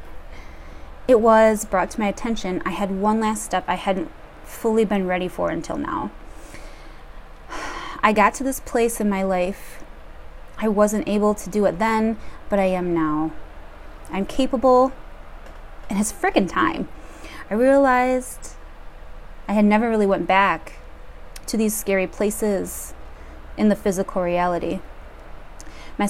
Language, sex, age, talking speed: English, female, 20-39, 140 wpm